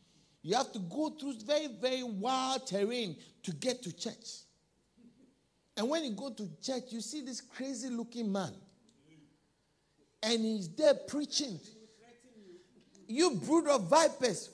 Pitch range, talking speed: 180-275 Hz, 135 wpm